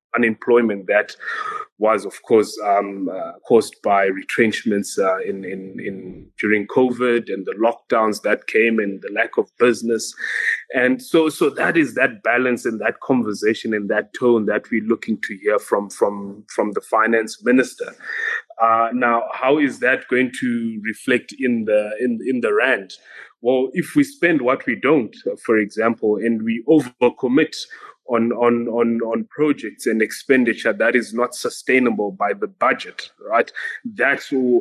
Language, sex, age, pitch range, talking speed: English, male, 20-39, 110-155 Hz, 160 wpm